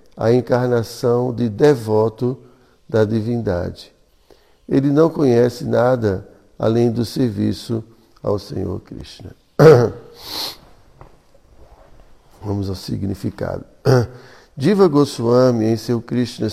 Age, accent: 60-79, Brazilian